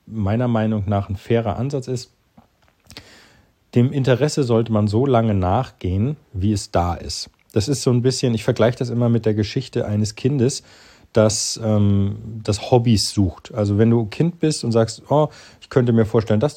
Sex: male